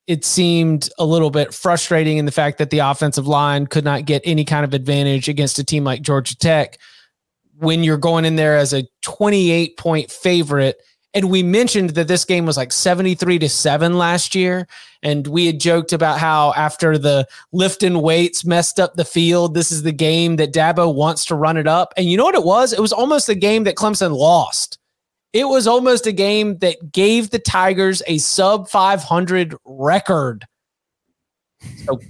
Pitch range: 155-190 Hz